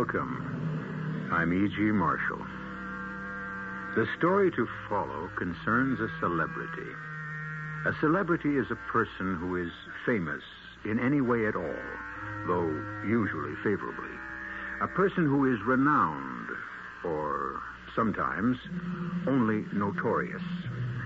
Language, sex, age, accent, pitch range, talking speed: English, male, 70-89, American, 95-140 Hz, 105 wpm